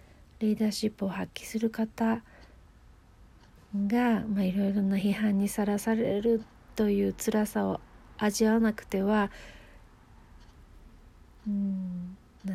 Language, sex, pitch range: Japanese, female, 190-225 Hz